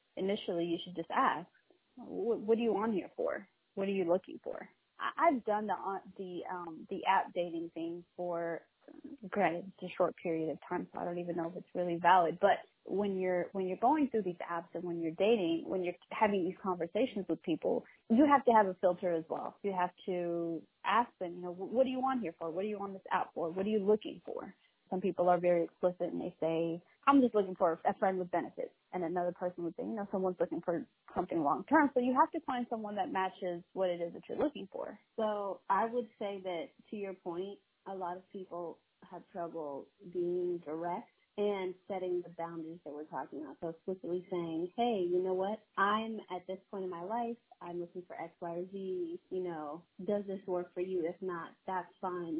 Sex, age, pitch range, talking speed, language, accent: female, 20-39, 175-205 Hz, 220 wpm, English, American